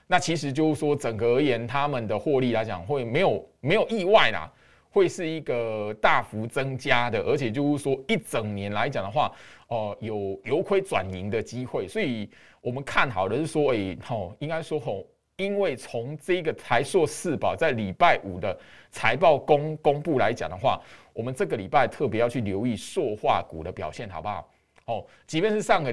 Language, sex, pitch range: Chinese, male, 110-155 Hz